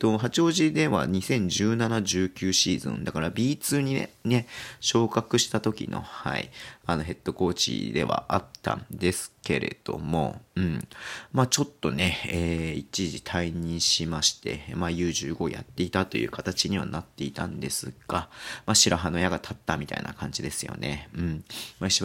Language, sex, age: Japanese, male, 40-59